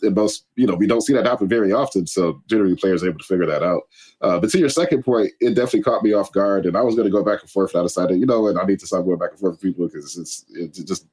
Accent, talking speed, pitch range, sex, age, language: American, 330 wpm, 90-105 Hz, male, 20-39, English